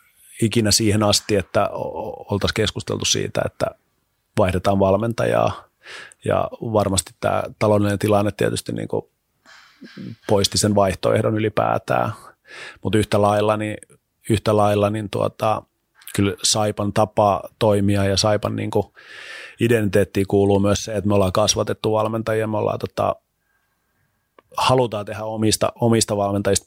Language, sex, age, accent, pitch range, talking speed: Finnish, male, 30-49, native, 105-115 Hz, 120 wpm